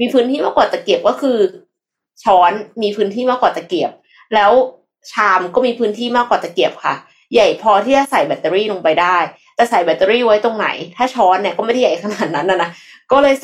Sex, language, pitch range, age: female, Thai, 180-245 Hz, 20-39